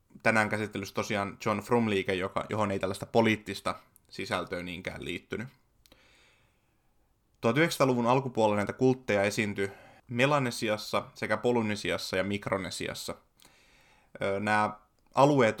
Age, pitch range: 20-39, 100-115 Hz